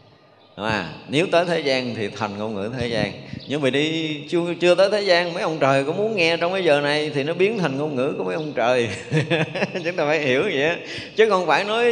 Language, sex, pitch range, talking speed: Vietnamese, male, 115-165 Hz, 245 wpm